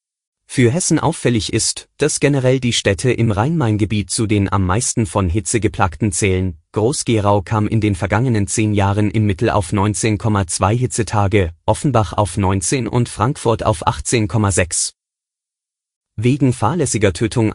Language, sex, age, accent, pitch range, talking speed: German, male, 30-49, German, 100-120 Hz, 135 wpm